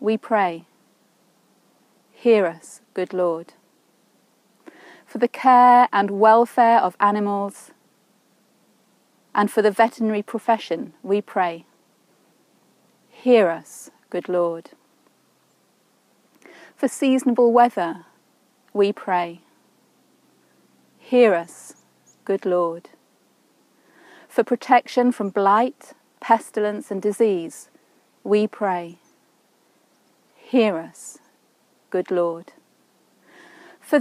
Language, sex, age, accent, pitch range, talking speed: English, female, 30-49, British, 175-240 Hz, 85 wpm